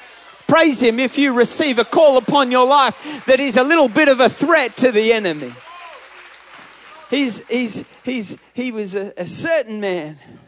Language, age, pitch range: English, 30-49, 205-270 Hz